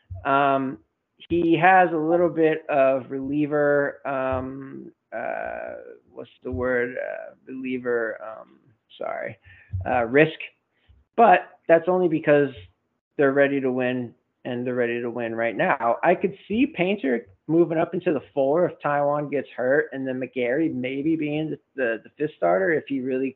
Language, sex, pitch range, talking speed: English, male, 130-160 Hz, 155 wpm